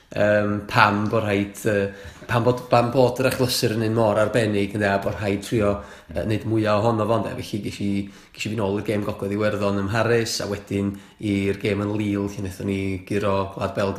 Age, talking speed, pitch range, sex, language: 20-39, 175 wpm, 100-115 Hz, male, English